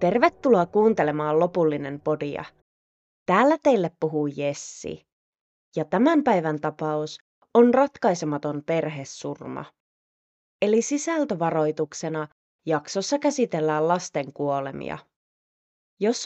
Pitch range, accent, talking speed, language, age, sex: 150-235 Hz, native, 80 wpm, Finnish, 20-39, female